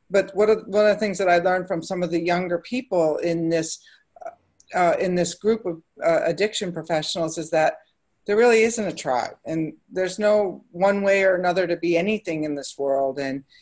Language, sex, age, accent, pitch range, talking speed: English, female, 50-69, American, 160-200 Hz, 200 wpm